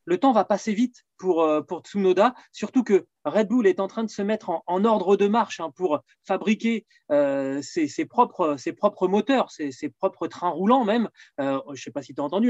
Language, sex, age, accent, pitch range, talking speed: French, male, 30-49, French, 160-235 Hz, 230 wpm